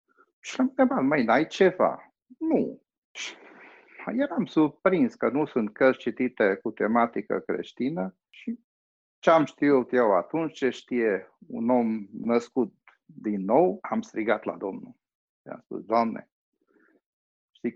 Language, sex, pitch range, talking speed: Romanian, male, 115-190 Hz, 130 wpm